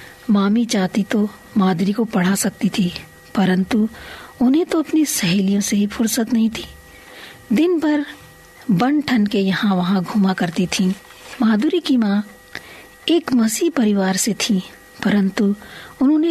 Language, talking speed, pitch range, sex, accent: Hindi, 135 wpm, 195-255 Hz, female, native